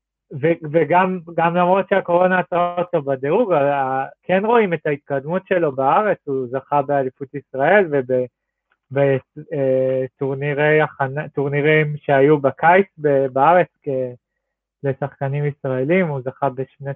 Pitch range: 135-175 Hz